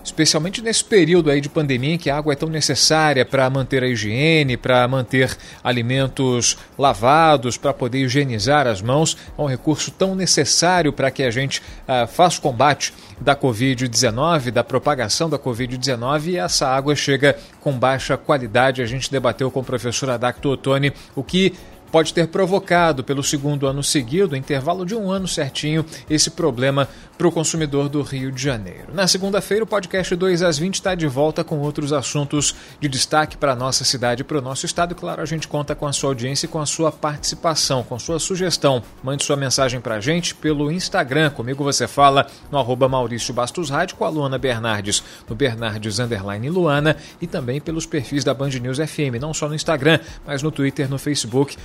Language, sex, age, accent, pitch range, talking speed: Portuguese, male, 40-59, Brazilian, 130-155 Hz, 190 wpm